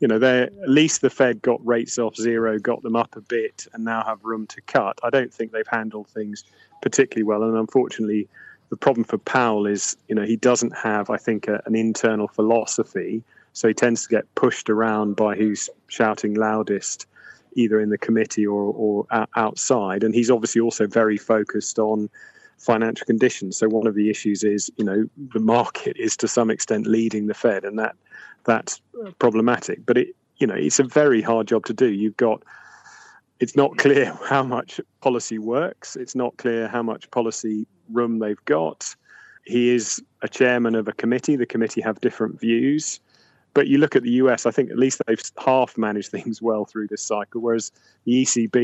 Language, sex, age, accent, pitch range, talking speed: English, male, 30-49, British, 110-120 Hz, 195 wpm